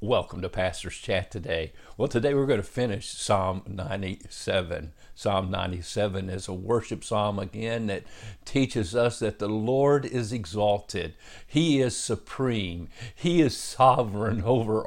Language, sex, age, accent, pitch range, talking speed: English, male, 60-79, American, 110-150 Hz, 140 wpm